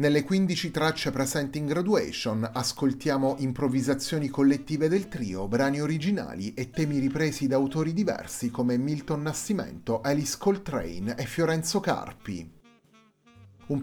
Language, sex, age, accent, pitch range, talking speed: Italian, male, 30-49, native, 125-155 Hz, 120 wpm